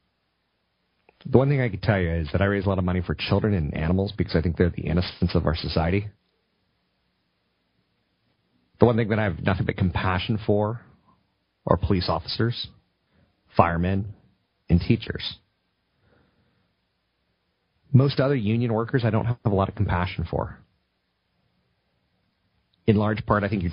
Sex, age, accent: male, 40-59, American